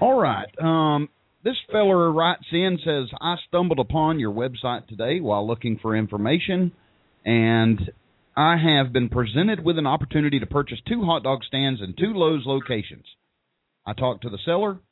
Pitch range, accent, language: 110-140 Hz, American, English